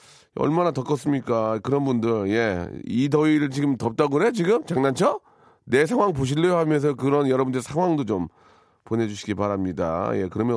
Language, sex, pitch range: Korean, male, 115-145 Hz